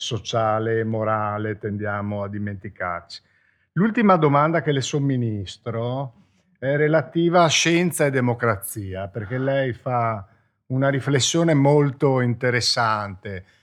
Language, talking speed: Italian, 105 wpm